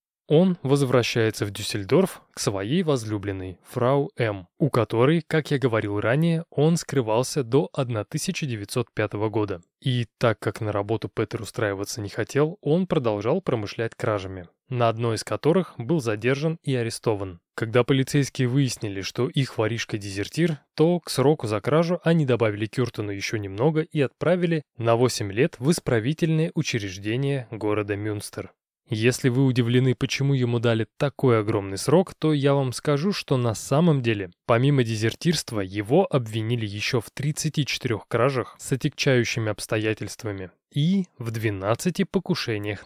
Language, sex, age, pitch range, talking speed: Russian, male, 20-39, 110-145 Hz, 140 wpm